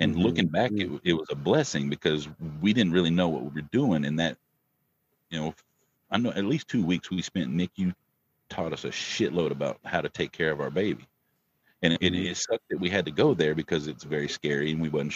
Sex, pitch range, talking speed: male, 75-90 Hz, 240 wpm